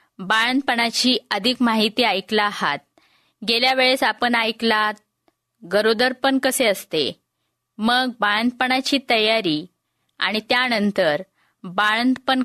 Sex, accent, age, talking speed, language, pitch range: female, native, 20-39, 85 wpm, Marathi, 205-255 Hz